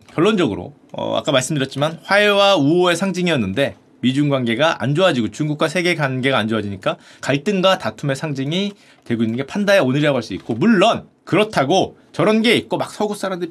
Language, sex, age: Korean, male, 30-49